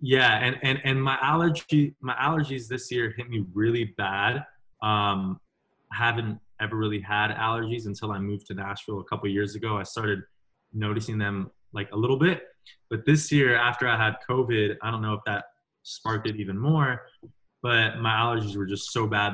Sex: male